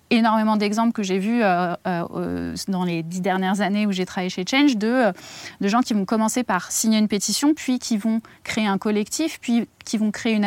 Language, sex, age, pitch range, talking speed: French, female, 20-39, 195-230 Hz, 225 wpm